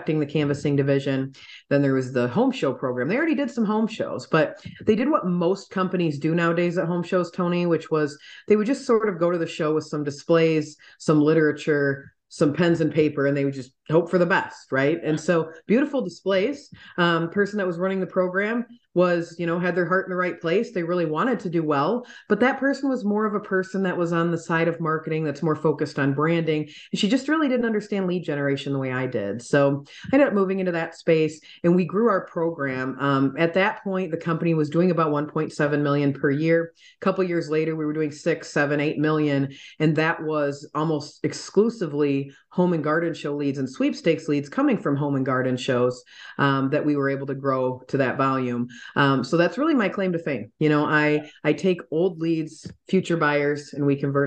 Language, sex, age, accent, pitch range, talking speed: English, female, 30-49, American, 145-180 Hz, 225 wpm